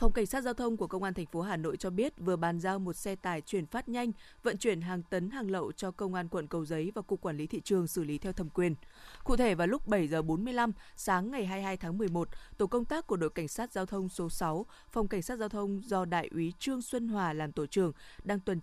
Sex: female